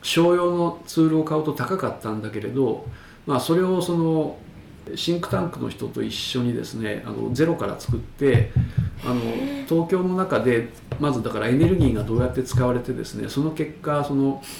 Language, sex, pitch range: Japanese, male, 115-145 Hz